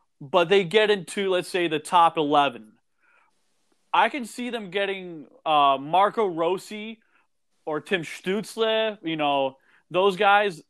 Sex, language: male, English